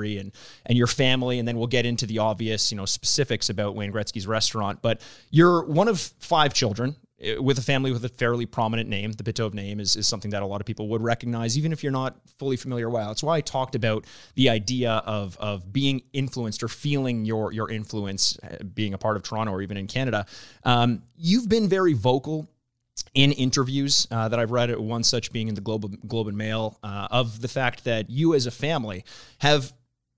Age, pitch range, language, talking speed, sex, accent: 30-49, 110-130 Hz, English, 215 wpm, male, American